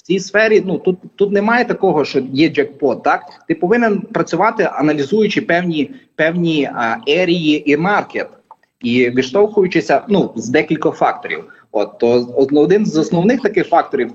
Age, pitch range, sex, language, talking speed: 30-49, 145-200 Hz, male, English, 150 wpm